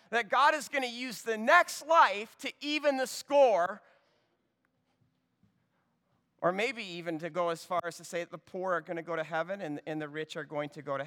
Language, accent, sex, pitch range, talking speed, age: English, American, male, 195-250 Hz, 220 wpm, 40-59